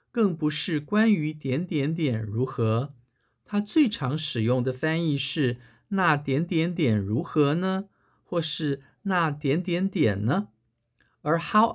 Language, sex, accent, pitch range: Chinese, male, native, 125-180 Hz